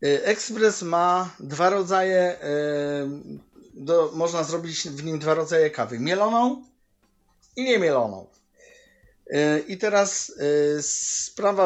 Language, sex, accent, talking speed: Polish, male, native, 95 wpm